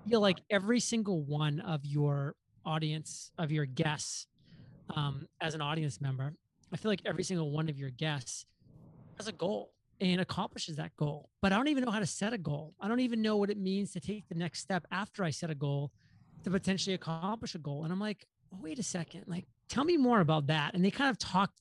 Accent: American